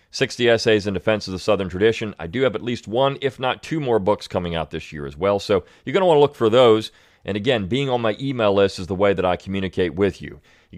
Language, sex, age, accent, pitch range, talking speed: English, male, 40-59, American, 95-120 Hz, 280 wpm